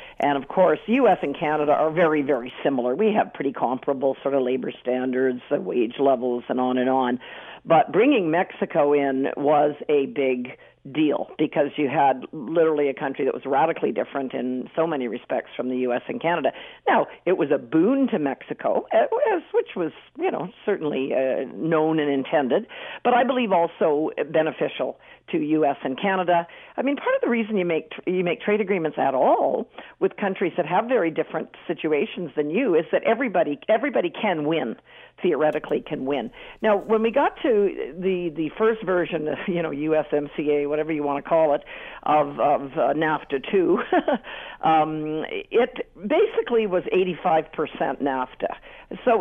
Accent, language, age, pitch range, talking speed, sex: American, English, 50-69, 145-225 Hz, 170 wpm, female